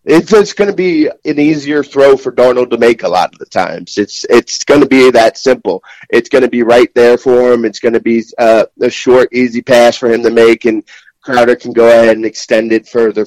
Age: 30-49